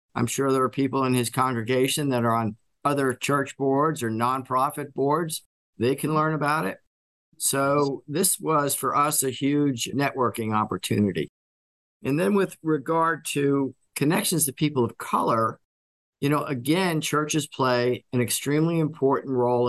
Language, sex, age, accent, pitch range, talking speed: English, male, 50-69, American, 115-140 Hz, 150 wpm